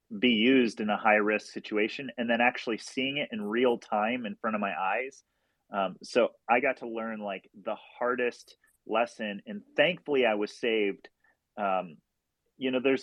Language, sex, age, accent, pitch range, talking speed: English, male, 30-49, American, 100-120 Hz, 175 wpm